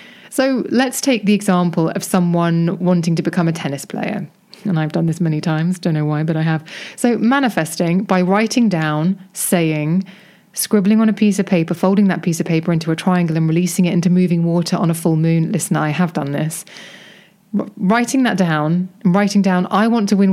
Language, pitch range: English, 165-200 Hz